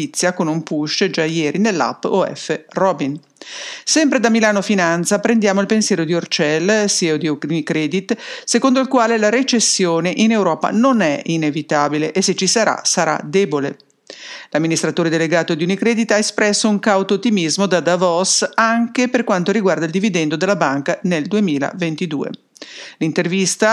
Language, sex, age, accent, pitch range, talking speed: English, female, 50-69, Italian, 165-215 Hz, 150 wpm